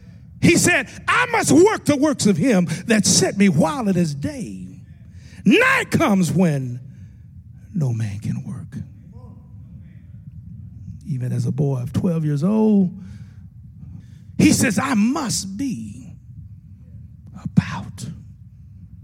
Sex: male